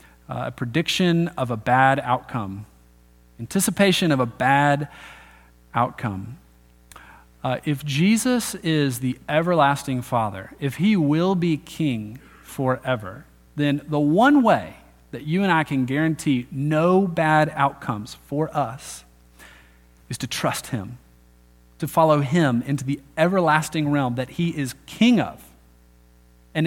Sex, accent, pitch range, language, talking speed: male, American, 110-165 Hz, English, 130 wpm